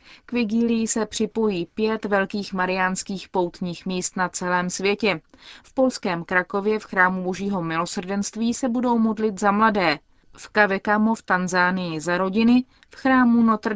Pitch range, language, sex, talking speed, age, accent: 180-220 Hz, Czech, female, 145 wpm, 30-49, native